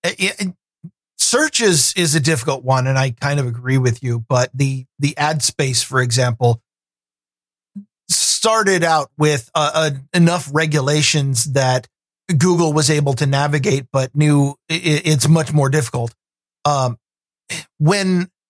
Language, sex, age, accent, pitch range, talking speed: English, male, 50-69, American, 130-170 Hz, 130 wpm